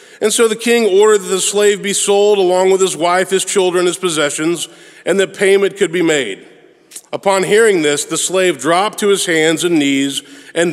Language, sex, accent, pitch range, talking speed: English, male, American, 160-200 Hz, 200 wpm